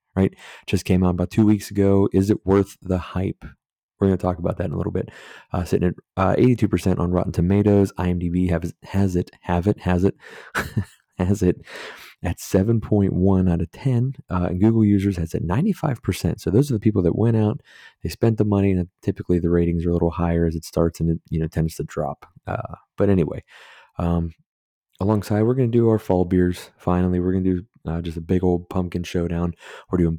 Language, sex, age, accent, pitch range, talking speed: English, male, 30-49, American, 85-100 Hz, 215 wpm